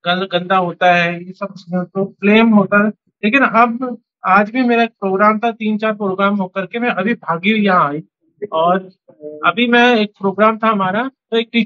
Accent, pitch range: native, 185-220 Hz